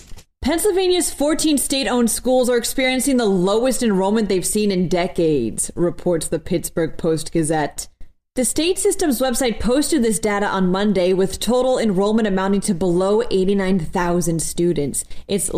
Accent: American